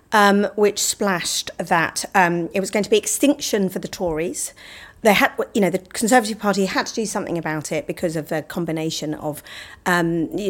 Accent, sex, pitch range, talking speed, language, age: British, female, 170-220 Hz, 195 wpm, English, 40-59